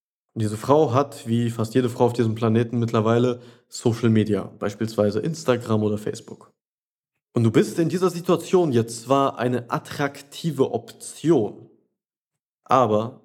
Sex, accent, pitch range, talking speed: male, German, 115-140 Hz, 135 wpm